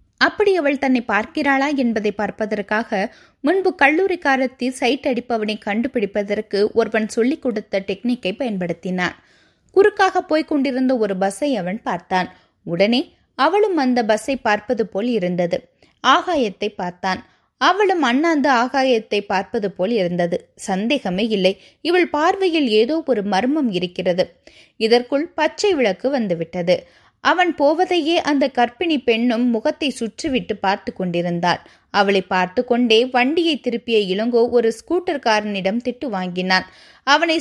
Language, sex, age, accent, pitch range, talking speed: Tamil, female, 20-39, native, 205-280 Hz, 95 wpm